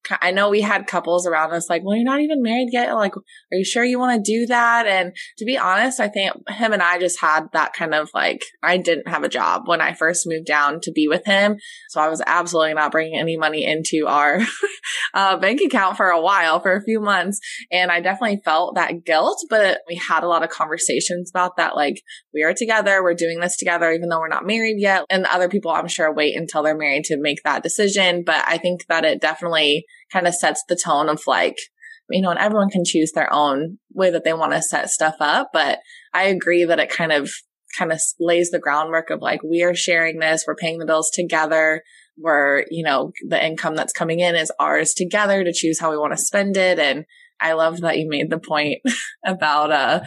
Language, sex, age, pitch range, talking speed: English, female, 20-39, 160-195 Hz, 235 wpm